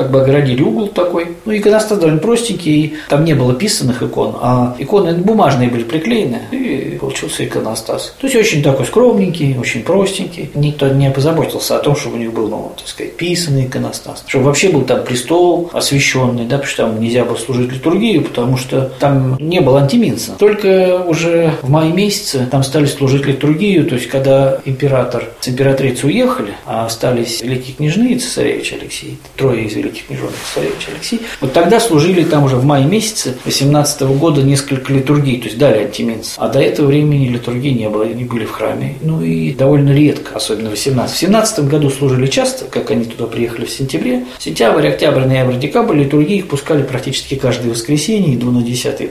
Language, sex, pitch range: Russian, male, 125-170 Hz